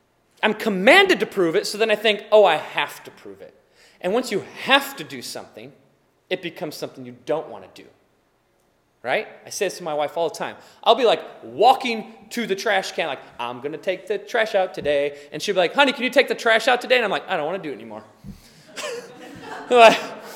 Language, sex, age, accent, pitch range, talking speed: English, male, 20-39, American, 195-275 Hz, 235 wpm